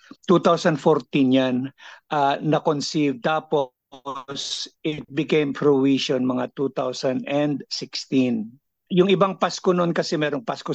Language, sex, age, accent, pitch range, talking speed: Filipino, male, 50-69, native, 140-175 Hz, 90 wpm